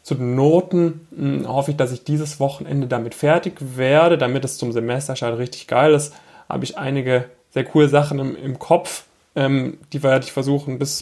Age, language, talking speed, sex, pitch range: 10-29, German, 190 wpm, male, 115-135 Hz